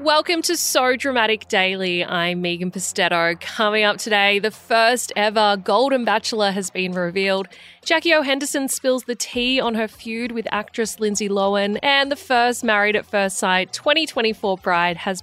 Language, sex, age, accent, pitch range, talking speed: English, female, 20-39, Australian, 190-265 Hz, 165 wpm